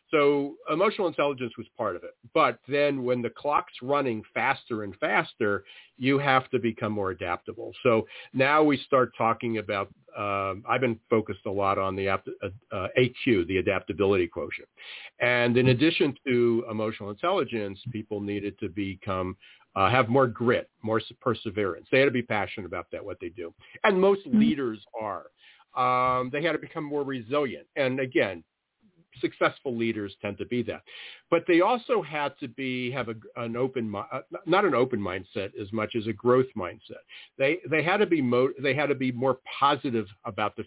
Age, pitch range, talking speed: 50-69, 110-130 Hz, 175 wpm